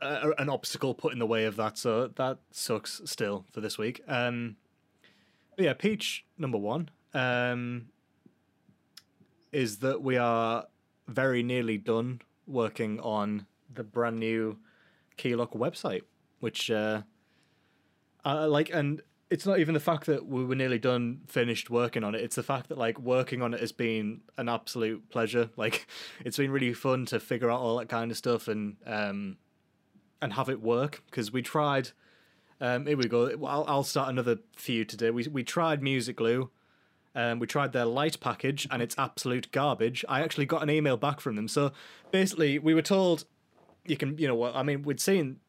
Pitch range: 115-145 Hz